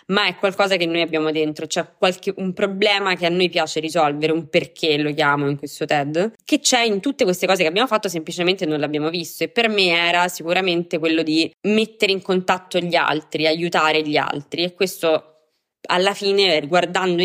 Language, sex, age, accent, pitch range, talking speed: Italian, female, 20-39, native, 145-165 Hz, 195 wpm